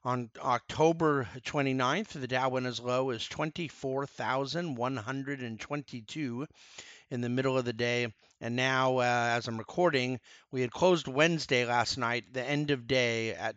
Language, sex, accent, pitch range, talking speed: English, male, American, 115-150 Hz, 145 wpm